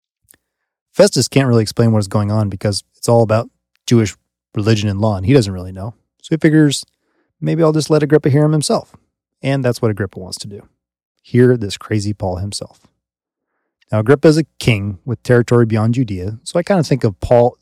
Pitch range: 100-125 Hz